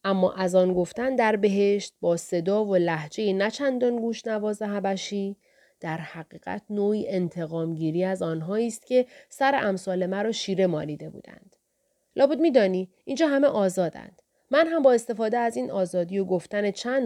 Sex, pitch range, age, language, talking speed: female, 180-230 Hz, 30-49, Persian, 155 wpm